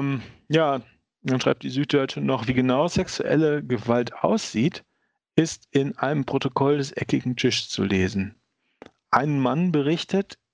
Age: 40-59